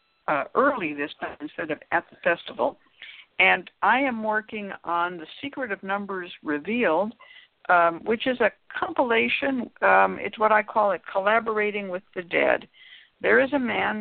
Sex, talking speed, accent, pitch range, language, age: female, 165 wpm, American, 175-230 Hz, English, 60-79